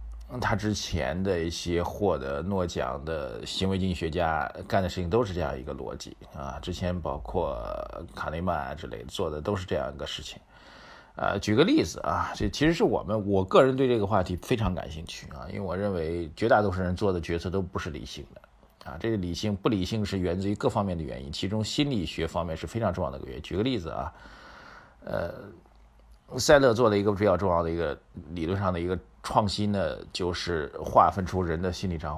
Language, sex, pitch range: Chinese, male, 85-105 Hz